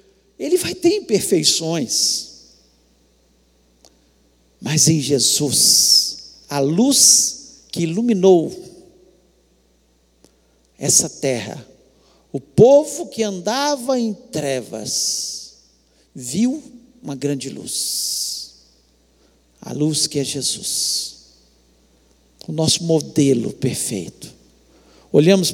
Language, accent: Portuguese, Brazilian